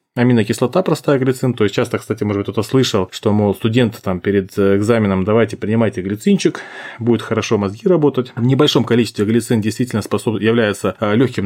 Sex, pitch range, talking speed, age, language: male, 100-125 Hz, 160 wpm, 20-39, Russian